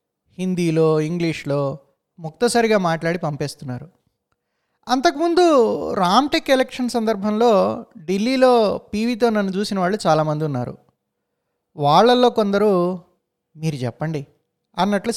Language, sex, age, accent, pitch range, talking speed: Telugu, male, 20-39, native, 155-215 Hz, 85 wpm